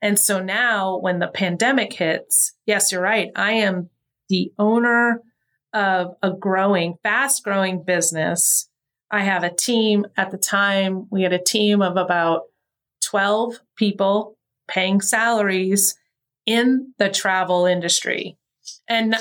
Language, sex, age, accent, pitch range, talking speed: English, female, 30-49, American, 180-210 Hz, 130 wpm